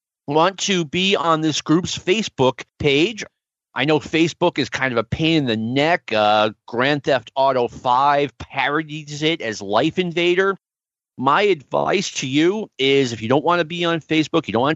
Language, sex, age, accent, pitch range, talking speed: English, male, 40-59, American, 135-180 Hz, 185 wpm